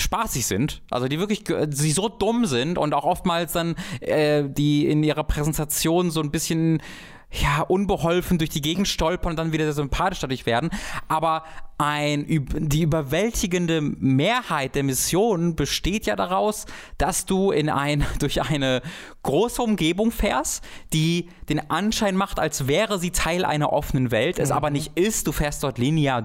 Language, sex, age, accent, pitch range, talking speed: German, male, 20-39, German, 145-185 Hz, 160 wpm